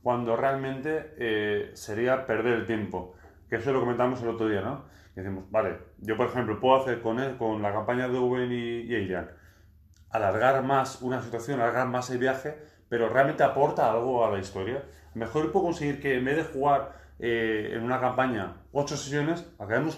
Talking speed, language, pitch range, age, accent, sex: 190 wpm, Spanish, 105-130 Hz, 30-49, Spanish, male